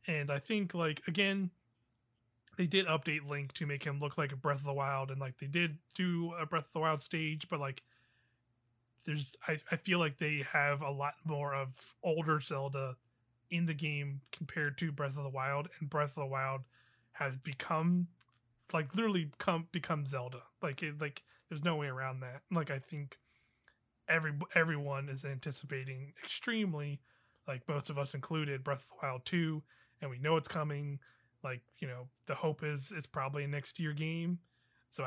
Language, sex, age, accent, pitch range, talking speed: English, male, 30-49, American, 135-160 Hz, 190 wpm